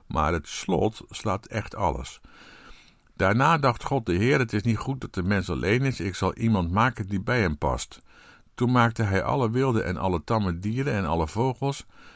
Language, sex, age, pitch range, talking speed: Dutch, male, 50-69, 90-120 Hz, 195 wpm